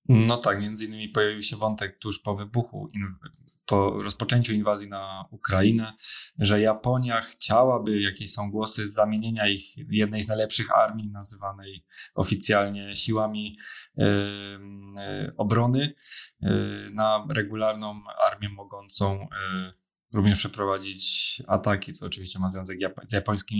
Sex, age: male, 20-39